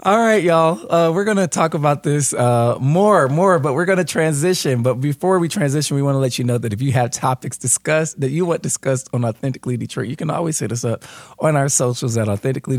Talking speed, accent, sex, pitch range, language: 245 wpm, American, male, 105-150 Hz, English